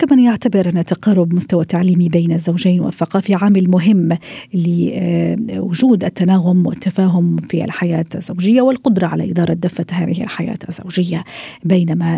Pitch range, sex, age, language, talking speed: 175-210 Hz, female, 40-59, Arabic, 125 wpm